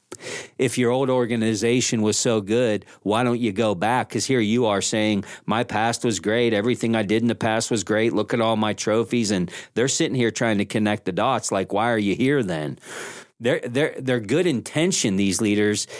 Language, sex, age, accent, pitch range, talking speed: English, male, 40-59, American, 105-130 Hz, 210 wpm